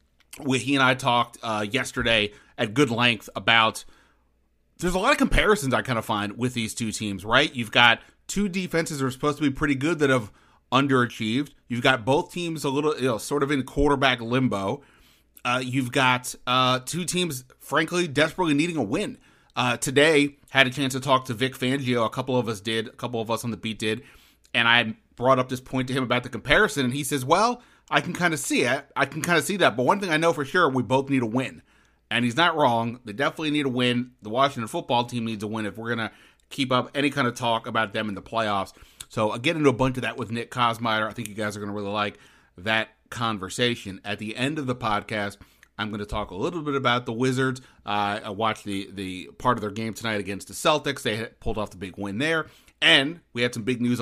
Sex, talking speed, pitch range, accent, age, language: male, 245 wpm, 110-140 Hz, American, 30-49, English